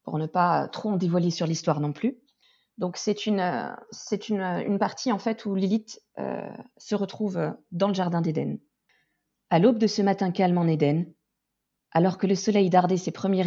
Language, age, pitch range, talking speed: French, 40-59, 165-205 Hz, 190 wpm